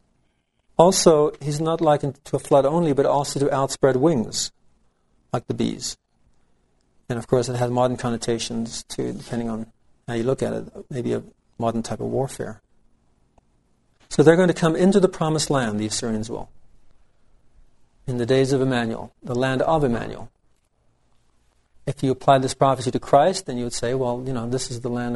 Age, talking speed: 50-69, 180 wpm